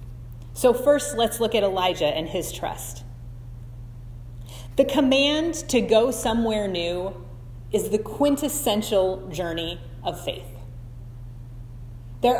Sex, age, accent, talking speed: female, 30-49, American, 105 wpm